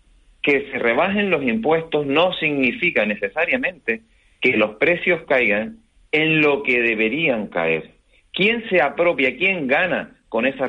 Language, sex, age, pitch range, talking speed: Spanish, male, 40-59, 110-155 Hz, 135 wpm